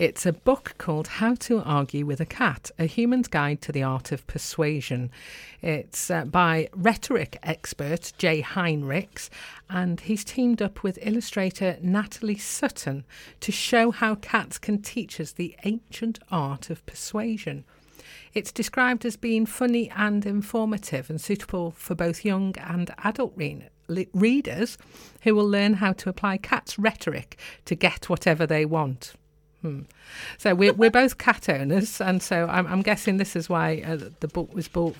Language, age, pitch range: English, 40-59, 160-220 Hz